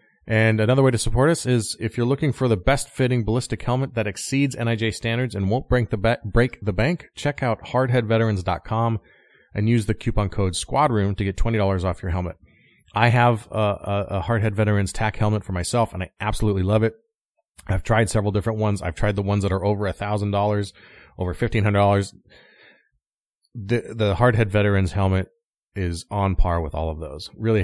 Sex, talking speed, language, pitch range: male, 190 wpm, English, 90-115 Hz